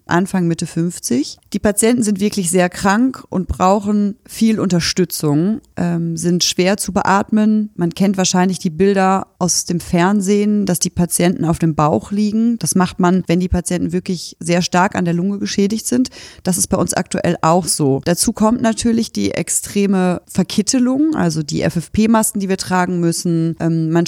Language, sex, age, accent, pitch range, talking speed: German, female, 30-49, German, 175-210 Hz, 170 wpm